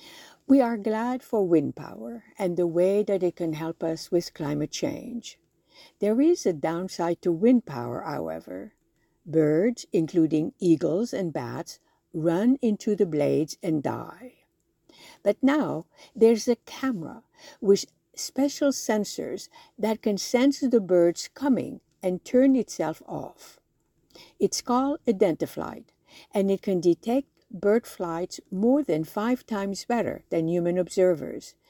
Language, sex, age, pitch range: English, female, 60-79, 170-245 Hz